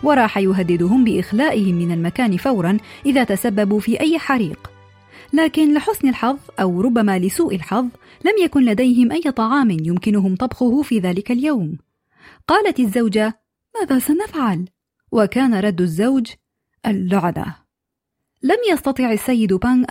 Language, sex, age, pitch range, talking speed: Arabic, female, 30-49, 210-270 Hz, 120 wpm